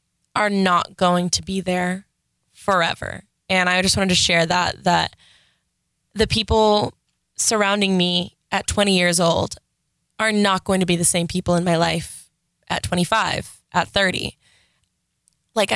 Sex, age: female, 20-39